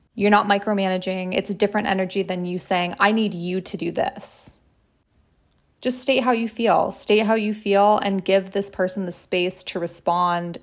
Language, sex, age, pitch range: English, female, 20-39, 180-210 Hz